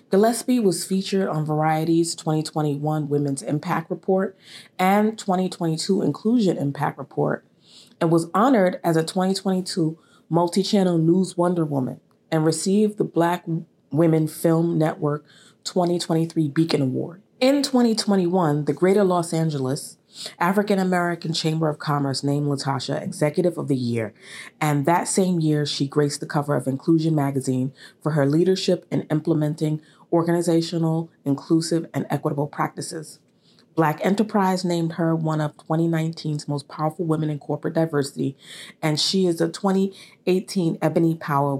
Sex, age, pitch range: female, 30-49, 150-180 Hz